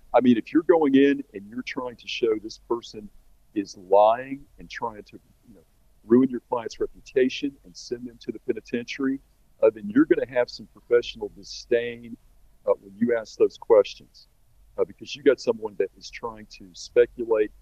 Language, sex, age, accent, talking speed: English, male, 50-69, American, 185 wpm